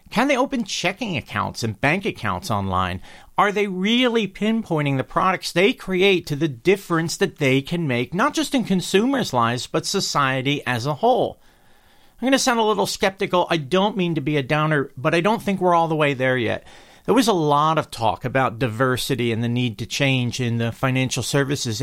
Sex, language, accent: male, English, American